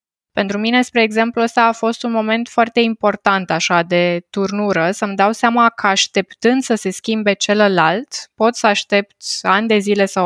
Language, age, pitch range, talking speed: Romanian, 20-39, 195-230 Hz, 175 wpm